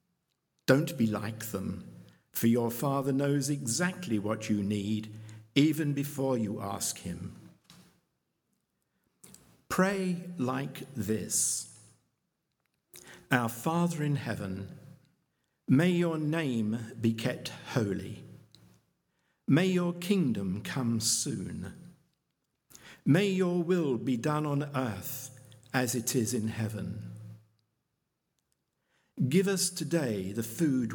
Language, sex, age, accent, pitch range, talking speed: English, male, 60-79, British, 115-155 Hz, 100 wpm